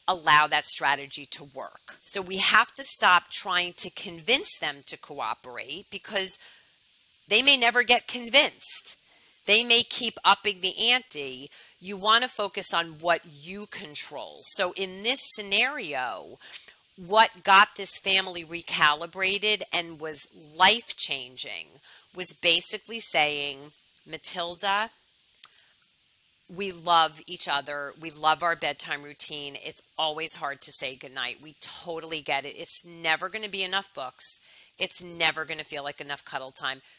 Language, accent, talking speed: English, American, 145 wpm